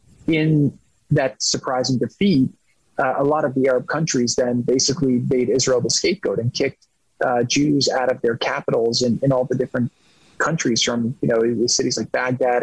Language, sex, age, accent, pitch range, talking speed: English, male, 30-49, American, 125-135 Hz, 175 wpm